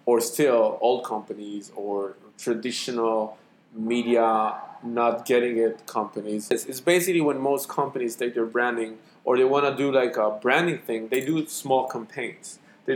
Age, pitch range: 20-39, 110-135 Hz